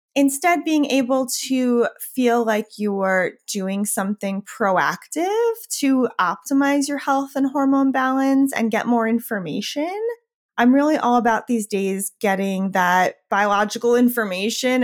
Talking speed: 130 wpm